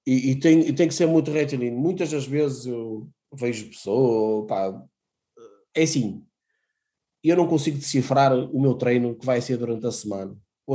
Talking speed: 160 wpm